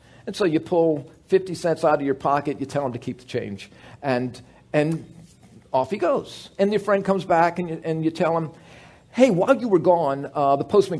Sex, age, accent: male, 50-69, American